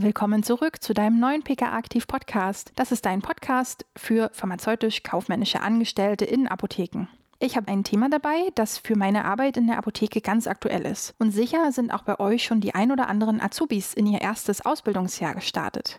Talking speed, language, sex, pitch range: 175 wpm, German, female, 200-250 Hz